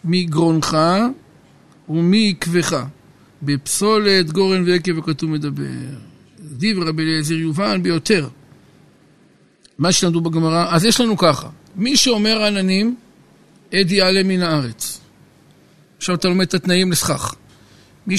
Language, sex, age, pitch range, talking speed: Hebrew, male, 50-69, 165-195 Hz, 110 wpm